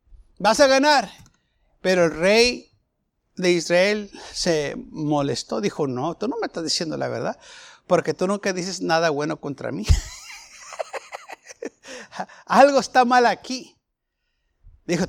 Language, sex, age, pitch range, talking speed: Spanish, male, 60-79, 175-270 Hz, 125 wpm